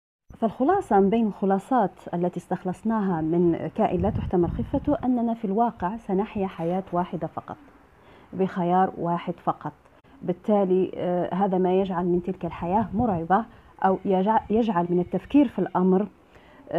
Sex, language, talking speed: female, Arabic, 120 wpm